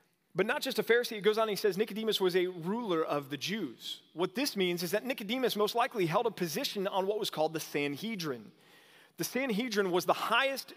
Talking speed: 225 wpm